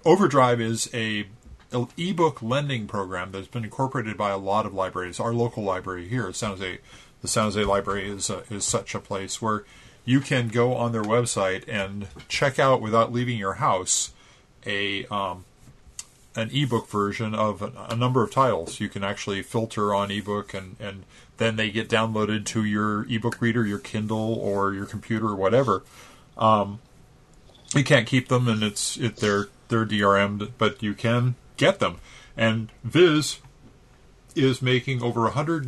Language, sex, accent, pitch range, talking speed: English, male, American, 100-125 Hz, 170 wpm